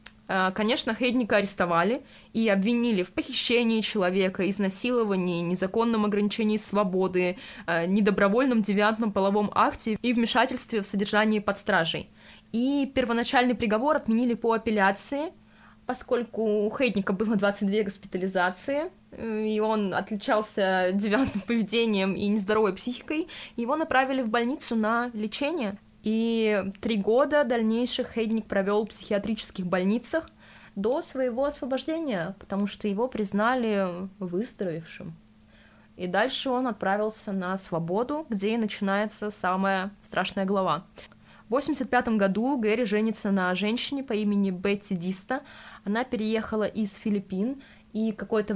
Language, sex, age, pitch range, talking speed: Russian, female, 20-39, 200-240 Hz, 115 wpm